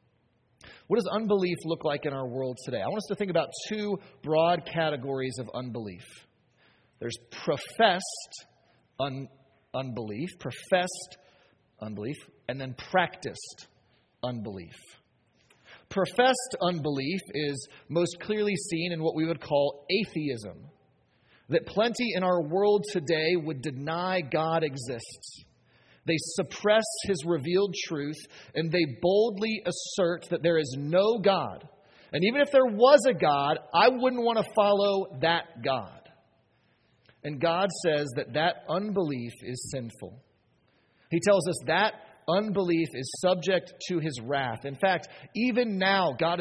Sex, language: male, English